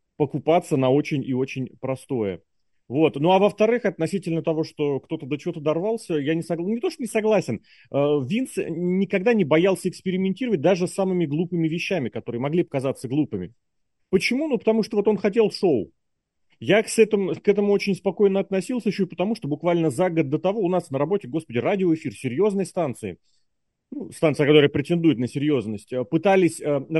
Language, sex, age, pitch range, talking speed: Russian, male, 30-49, 140-190 Hz, 180 wpm